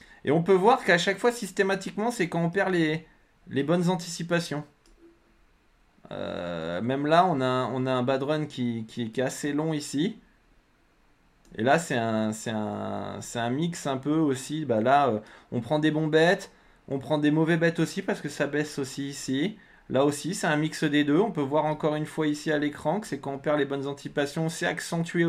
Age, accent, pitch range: 20-39, French, 125-165 Hz